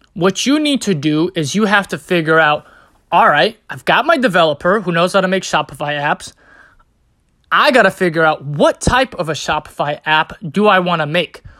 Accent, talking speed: American, 205 wpm